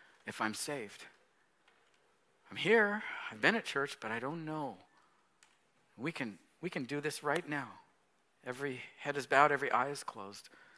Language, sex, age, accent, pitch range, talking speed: English, male, 50-69, American, 100-130 Hz, 160 wpm